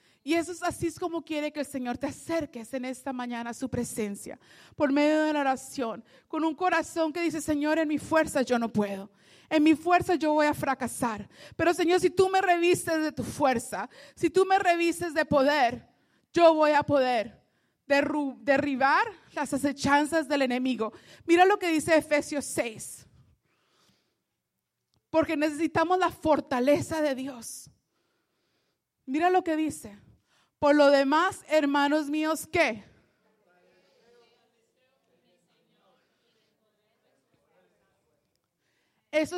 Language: Spanish